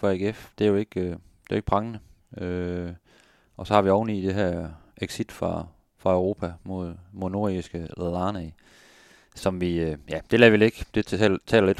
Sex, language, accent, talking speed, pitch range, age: male, Danish, native, 195 wpm, 85-100 Hz, 30-49